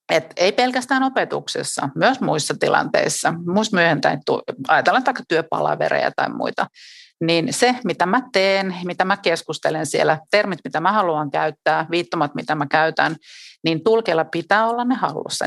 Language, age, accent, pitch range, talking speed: Finnish, 40-59, native, 155-220 Hz, 145 wpm